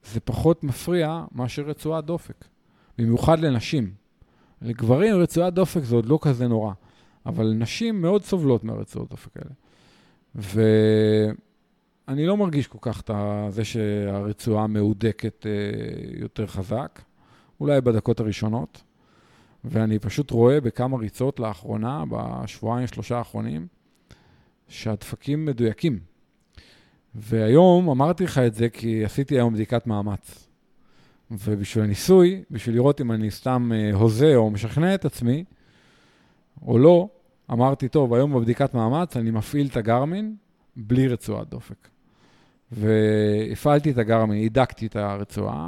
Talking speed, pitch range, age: 115 wpm, 110-145 Hz, 40-59